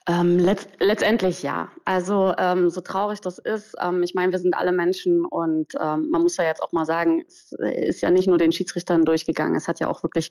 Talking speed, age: 220 wpm, 30-49